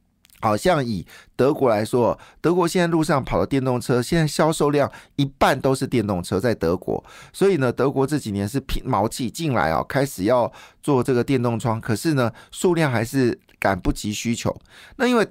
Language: Chinese